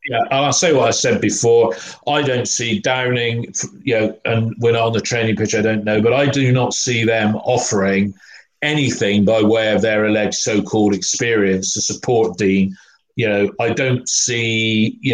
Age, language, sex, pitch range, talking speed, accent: 40-59, English, male, 105-125 Hz, 180 wpm, British